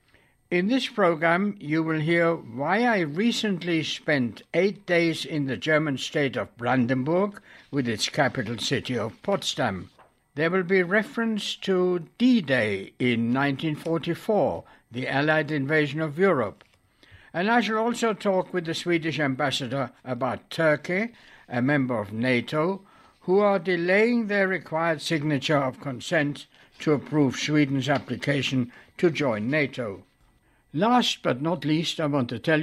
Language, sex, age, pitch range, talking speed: English, male, 60-79, 130-180 Hz, 140 wpm